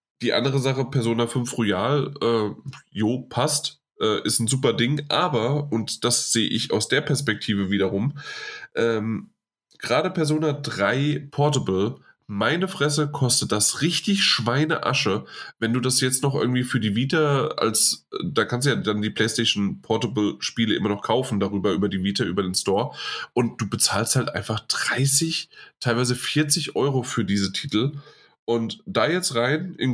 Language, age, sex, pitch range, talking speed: German, 10-29, male, 110-145 Hz, 160 wpm